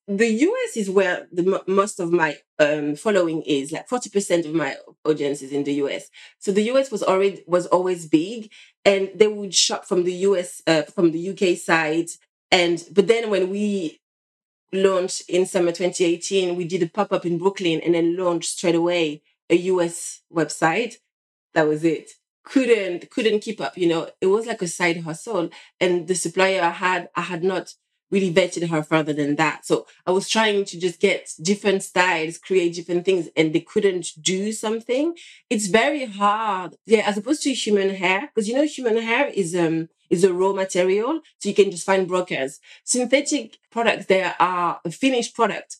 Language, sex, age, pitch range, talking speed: English, female, 30-49, 175-225 Hz, 185 wpm